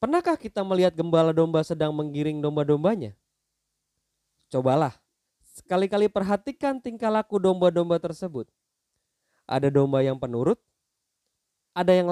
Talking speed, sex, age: 105 wpm, male, 20-39